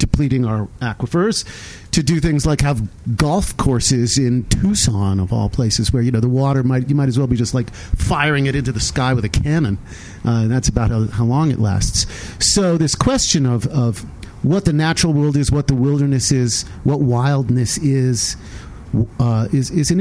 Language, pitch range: English, 110-140 Hz